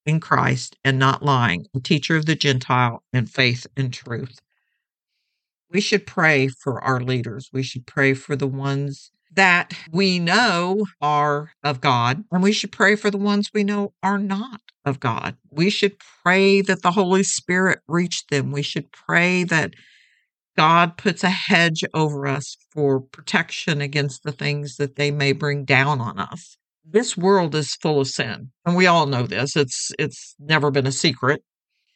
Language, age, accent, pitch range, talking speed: English, 50-69, American, 135-180 Hz, 175 wpm